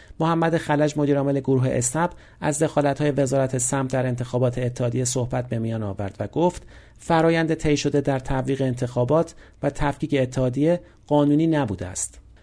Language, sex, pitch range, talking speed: Persian, male, 125-155 Hz, 145 wpm